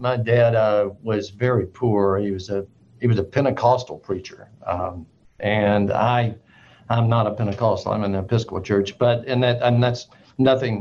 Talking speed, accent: 180 wpm, American